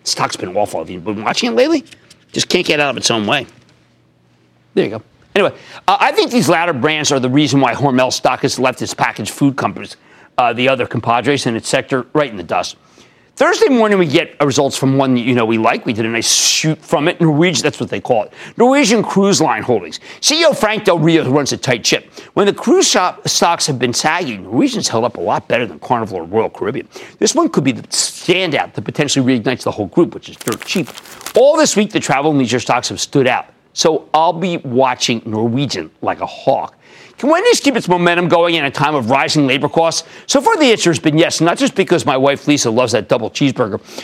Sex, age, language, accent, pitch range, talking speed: male, 50-69, English, American, 130-185 Hz, 230 wpm